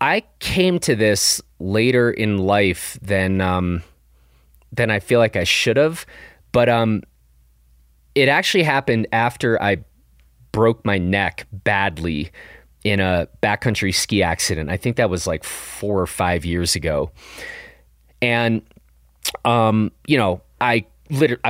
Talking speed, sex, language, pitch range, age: 135 wpm, male, English, 95-120 Hz, 30-49